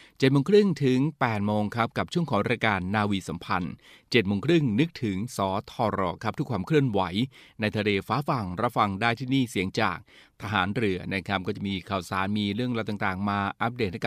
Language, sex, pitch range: Thai, male, 100-120 Hz